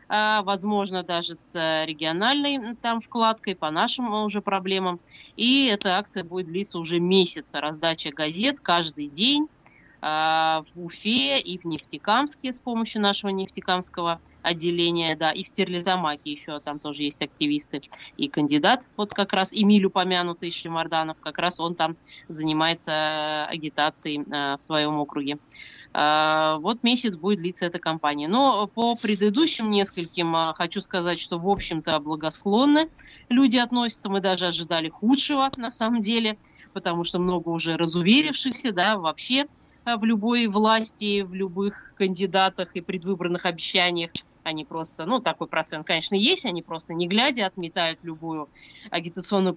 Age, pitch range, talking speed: 20-39, 160-215 Hz, 140 wpm